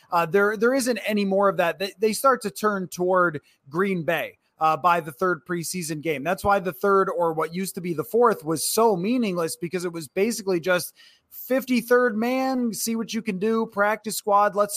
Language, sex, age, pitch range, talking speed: English, male, 20-39, 170-210 Hz, 210 wpm